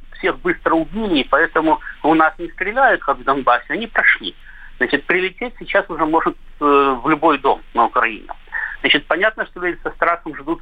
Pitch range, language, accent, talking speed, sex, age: 145-200 Hz, Russian, native, 170 wpm, male, 50-69